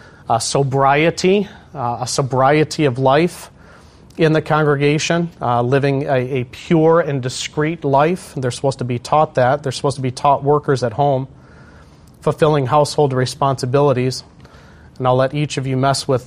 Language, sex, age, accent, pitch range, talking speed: English, male, 30-49, American, 125-145 Hz, 160 wpm